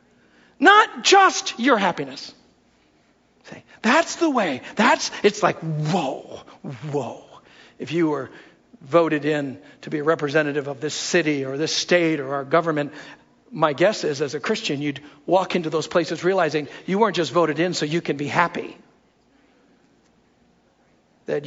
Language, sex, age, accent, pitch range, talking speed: English, male, 60-79, American, 150-250 Hz, 150 wpm